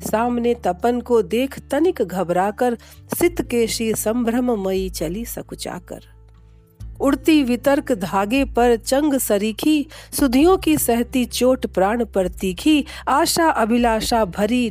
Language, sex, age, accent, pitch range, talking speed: Hindi, female, 50-69, native, 195-265 Hz, 120 wpm